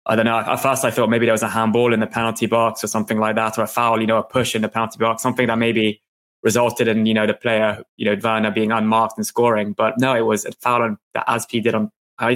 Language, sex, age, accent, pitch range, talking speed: English, male, 20-39, British, 110-120 Hz, 280 wpm